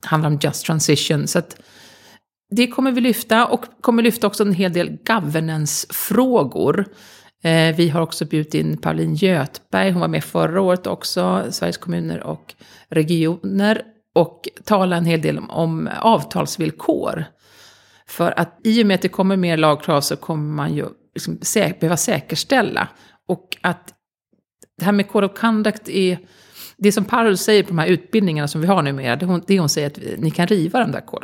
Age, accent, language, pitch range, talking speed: 30-49, native, Swedish, 155-195 Hz, 185 wpm